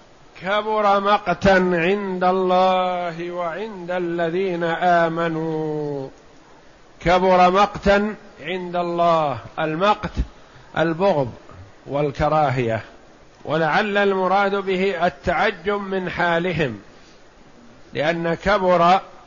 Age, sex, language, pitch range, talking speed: 50-69, male, Arabic, 165-195 Hz, 70 wpm